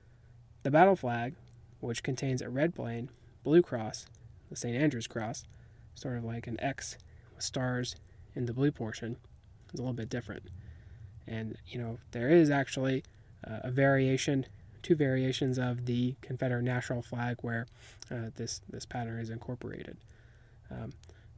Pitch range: 115-135 Hz